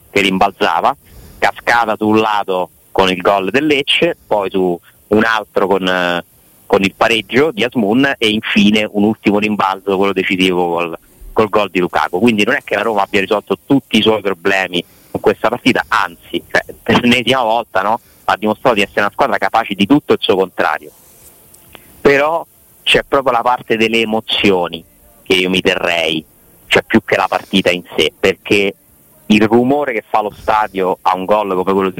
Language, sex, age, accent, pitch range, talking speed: Italian, male, 30-49, native, 95-110 Hz, 180 wpm